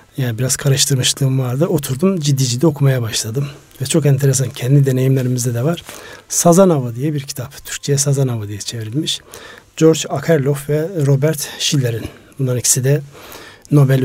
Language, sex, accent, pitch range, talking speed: Turkish, male, native, 130-155 Hz, 140 wpm